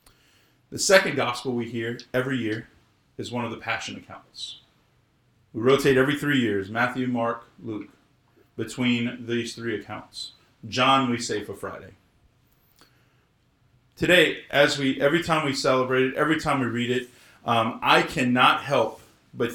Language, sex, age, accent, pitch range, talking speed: English, male, 40-59, American, 115-145 Hz, 145 wpm